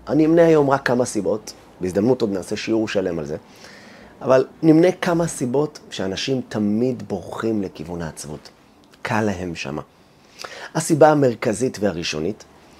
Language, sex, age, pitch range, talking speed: Hebrew, male, 30-49, 90-140 Hz, 130 wpm